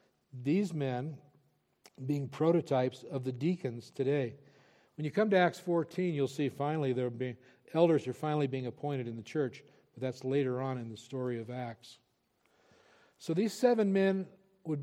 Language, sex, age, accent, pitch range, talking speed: English, male, 60-79, American, 130-155 Hz, 165 wpm